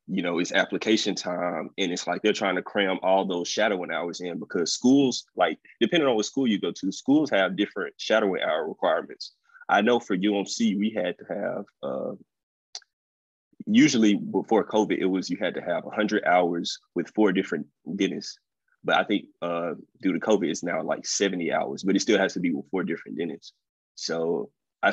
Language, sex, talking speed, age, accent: English, male, 195 wpm, 20-39, American